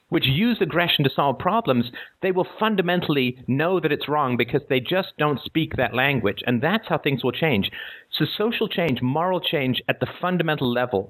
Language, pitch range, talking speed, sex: English, 115-160 Hz, 190 wpm, male